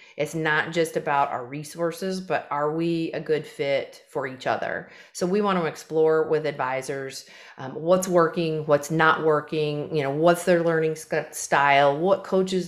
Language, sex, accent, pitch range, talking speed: English, female, American, 150-185 Hz, 170 wpm